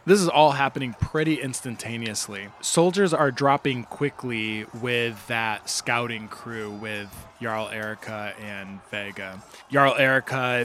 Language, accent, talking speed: English, American, 120 wpm